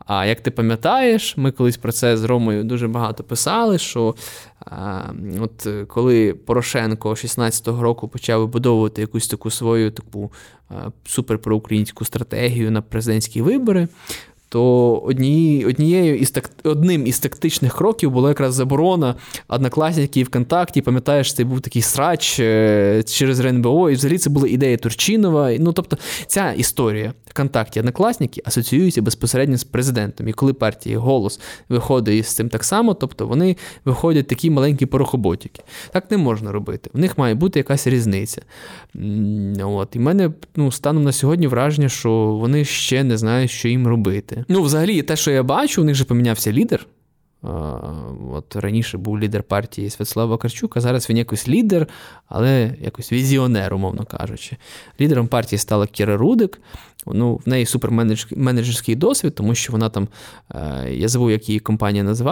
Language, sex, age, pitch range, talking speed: Ukrainian, male, 20-39, 110-140 Hz, 145 wpm